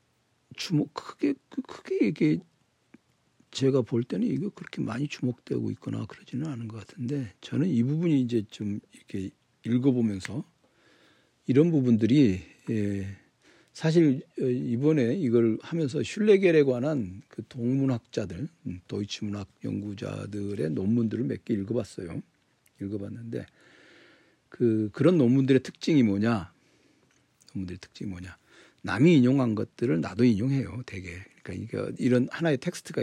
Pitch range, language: 110-150 Hz, Korean